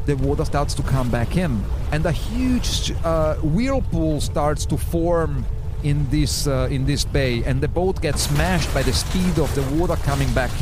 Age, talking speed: 40-59, 190 wpm